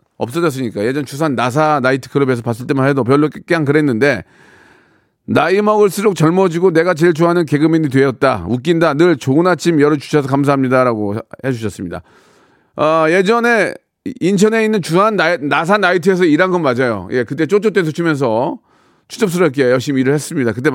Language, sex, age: Korean, male, 40-59